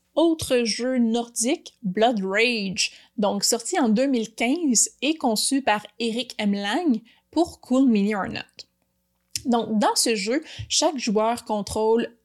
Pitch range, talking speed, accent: 210-260 Hz, 130 wpm, Canadian